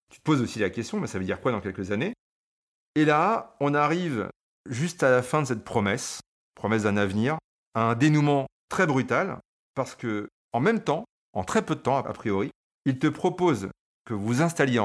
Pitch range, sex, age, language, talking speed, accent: 110-150 Hz, male, 40-59, French, 210 wpm, French